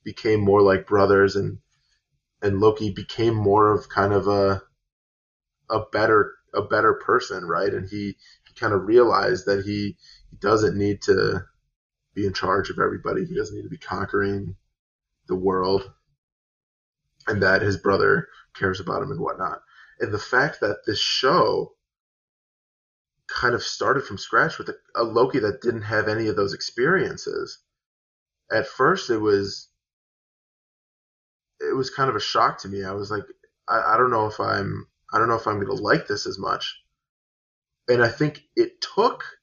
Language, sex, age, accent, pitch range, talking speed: English, male, 20-39, American, 100-145 Hz, 170 wpm